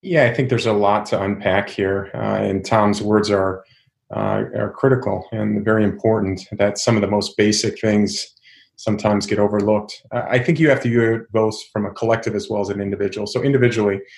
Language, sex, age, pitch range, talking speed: English, male, 30-49, 100-115 Hz, 205 wpm